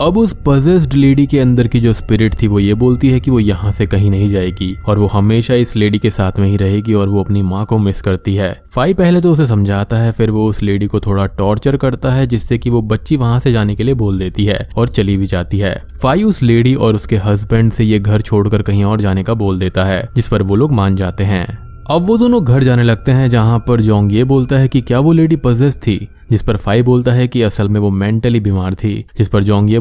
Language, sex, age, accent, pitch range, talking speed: Hindi, male, 20-39, native, 100-125 Hz, 240 wpm